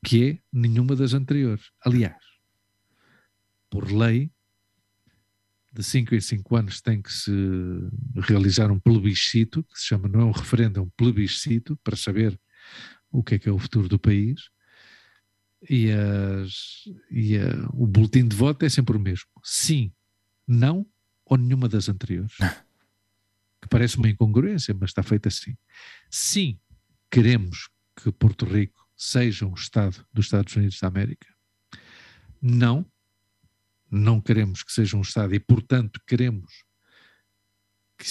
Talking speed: 140 wpm